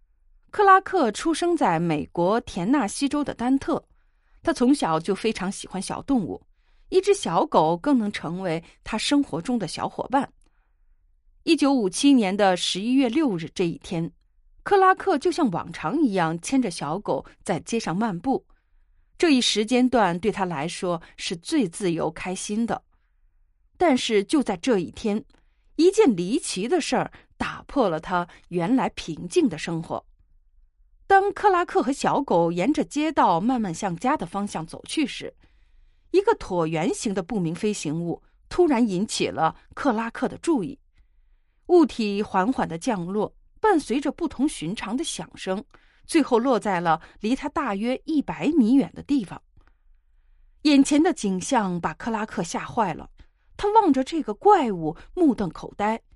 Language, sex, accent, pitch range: Chinese, female, native, 180-290 Hz